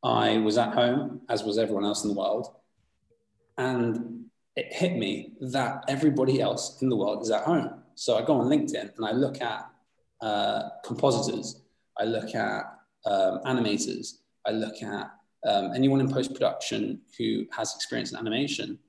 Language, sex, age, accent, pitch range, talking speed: English, male, 20-39, British, 105-130 Hz, 165 wpm